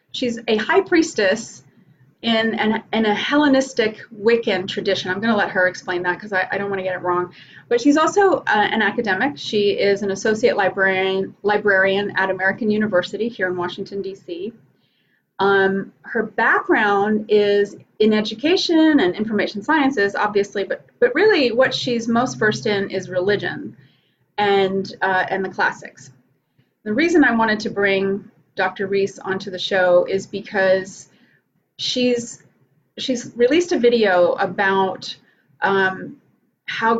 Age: 30-49